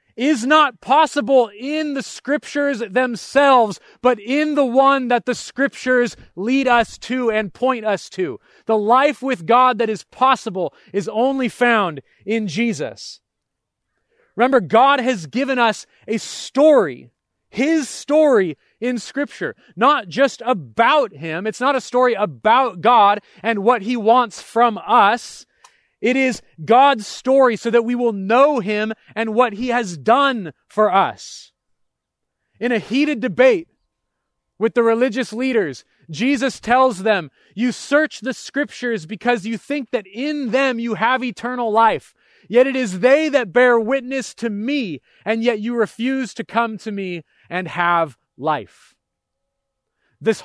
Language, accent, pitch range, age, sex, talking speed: English, American, 220-265 Hz, 30-49, male, 145 wpm